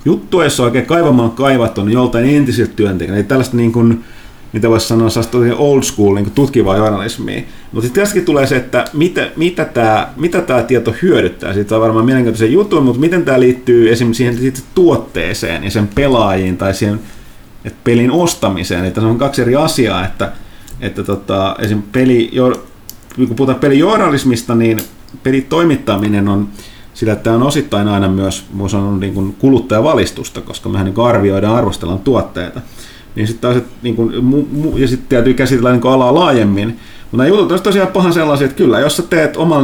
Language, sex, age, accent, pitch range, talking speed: Finnish, male, 30-49, native, 105-130 Hz, 175 wpm